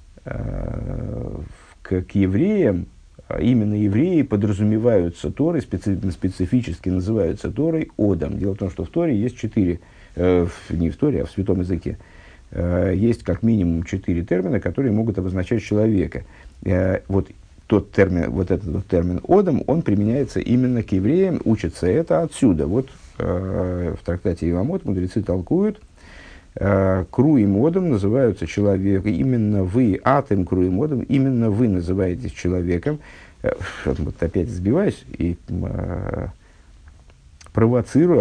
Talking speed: 115 wpm